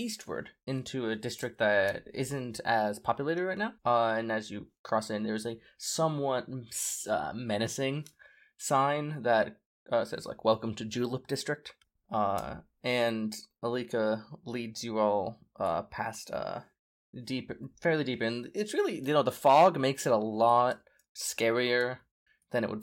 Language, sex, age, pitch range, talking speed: English, male, 20-39, 115-140 Hz, 150 wpm